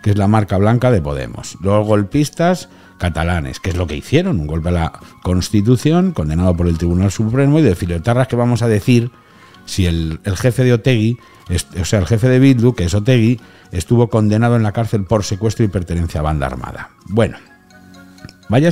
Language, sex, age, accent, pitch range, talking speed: Spanish, male, 60-79, Spanish, 90-120 Hz, 195 wpm